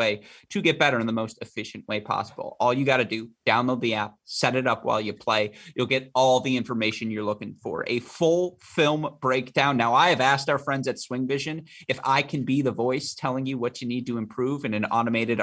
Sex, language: male, English